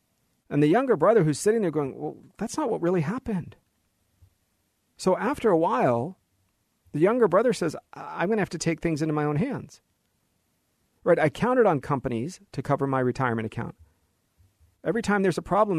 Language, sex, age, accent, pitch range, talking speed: English, male, 40-59, American, 120-170 Hz, 180 wpm